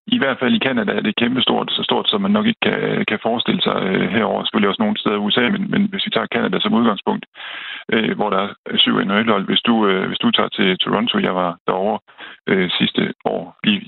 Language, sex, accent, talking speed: Danish, male, native, 235 wpm